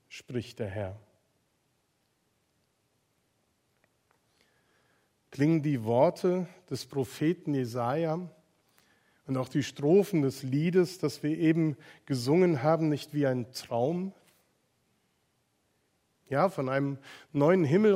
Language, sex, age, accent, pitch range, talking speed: German, male, 40-59, German, 135-165 Hz, 95 wpm